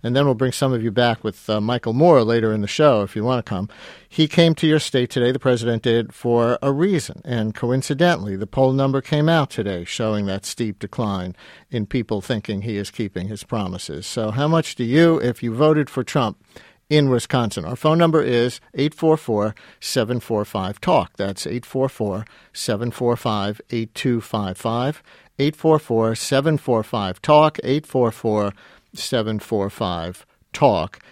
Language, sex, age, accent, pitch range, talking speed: English, male, 50-69, American, 115-135 Hz, 145 wpm